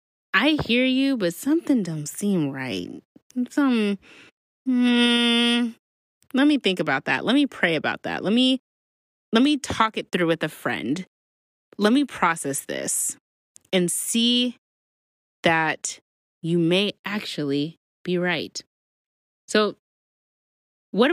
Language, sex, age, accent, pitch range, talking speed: English, female, 20-39, American, 165-225 Hz, 125 wpm